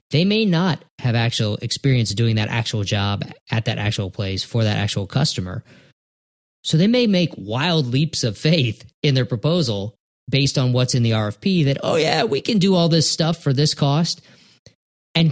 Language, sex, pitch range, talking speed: English, male, 110-150 Hz, 190 wpm